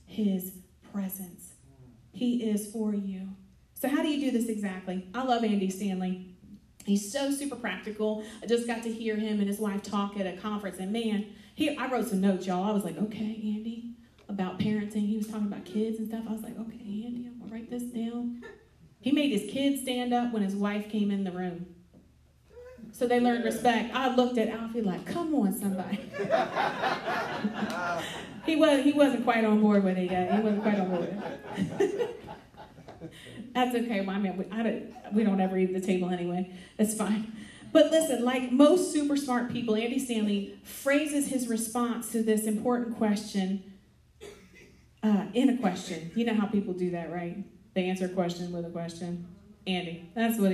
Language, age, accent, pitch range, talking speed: English, 30-49, American, 190-235 Hz, 190 wpm